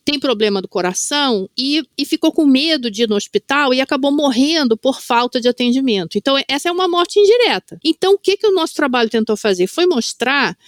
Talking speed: 210 wpm